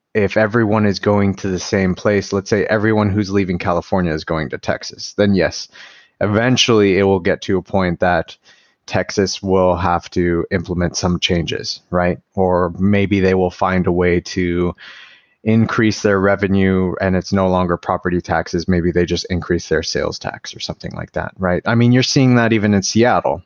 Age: 30-49